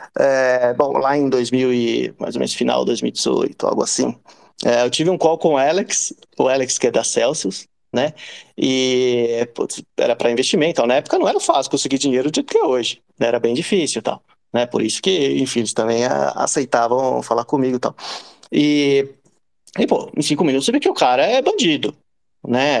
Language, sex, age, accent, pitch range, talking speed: Portuguese, male, 30-49, Brazilian, 120-150 Hz, 180 wpm